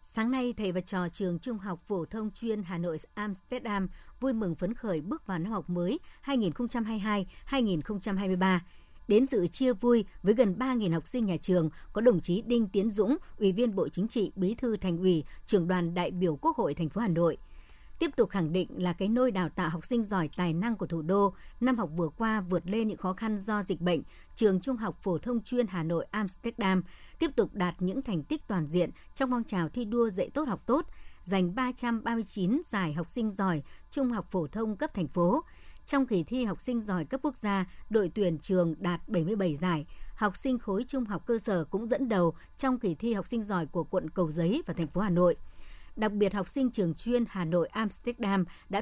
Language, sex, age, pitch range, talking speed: Vietnamese, male, 60-79, 180-235 Hz, 220 wpm